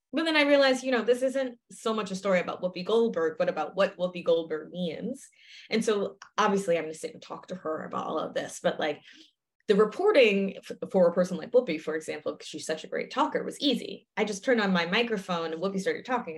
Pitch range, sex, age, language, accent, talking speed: 180-255 Hz, female, 20-39, English, American, 240 wpm